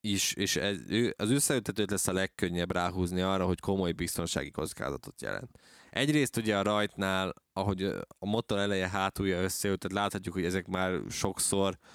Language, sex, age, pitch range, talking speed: Hungarian, male, 20-39, 90-100 Hz, 150 wpm